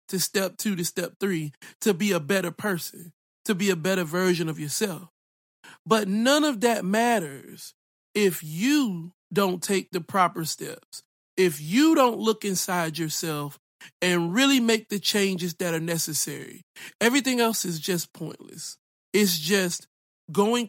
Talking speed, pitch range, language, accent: 150 wpm, 170-215 Hz, English, American